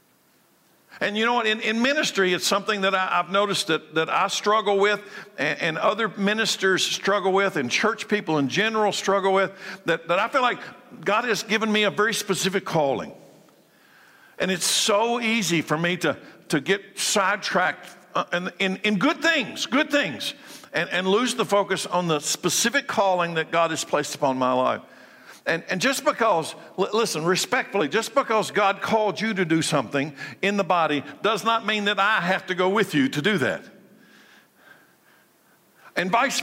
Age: 60-79